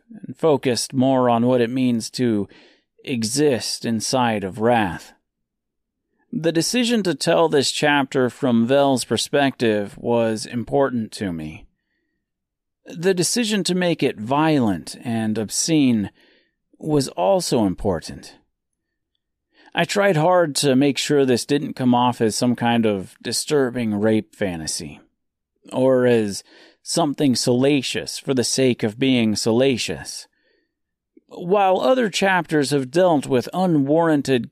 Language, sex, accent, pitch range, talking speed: English, male, American, 110-155 Hz, 120 wpm